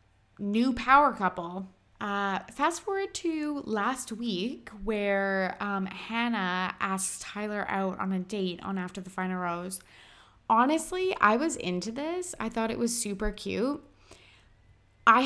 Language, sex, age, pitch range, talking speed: English, female, 20-39, 185-230 Hz, 140 wpm